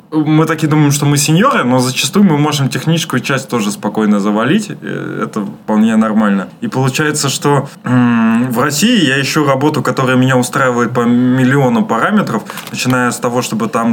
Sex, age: male, 20-39